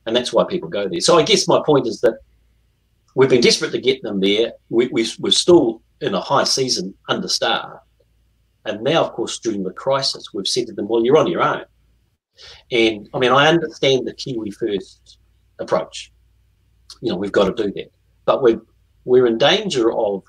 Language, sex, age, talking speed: English, male, 40-59, 200 wpm